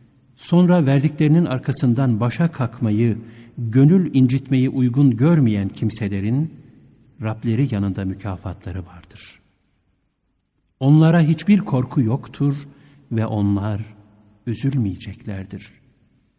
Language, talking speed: Turkish, 75 wpm